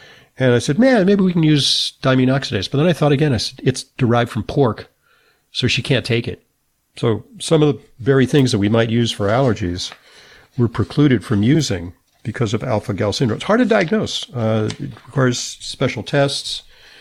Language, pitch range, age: English, 110-140 Hz, 50-69